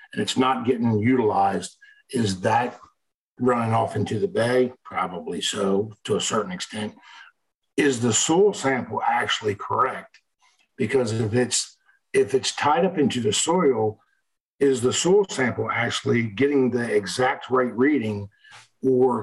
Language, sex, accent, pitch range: English, male, American, 120-170 Hz